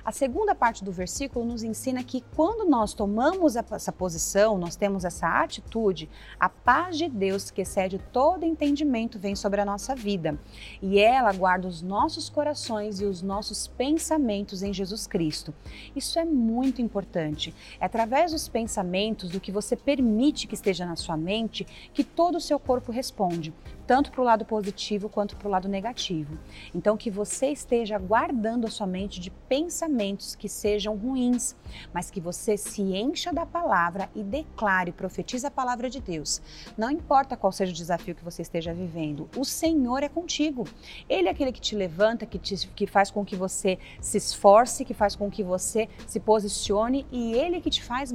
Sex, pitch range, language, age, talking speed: female, 195-265 Hz, Portuguese, 30-49, 180 wpm